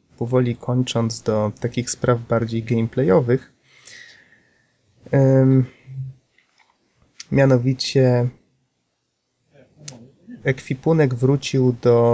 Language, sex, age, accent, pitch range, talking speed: Polish, male, 20-39, native, 115-135 Hz, 55 wpm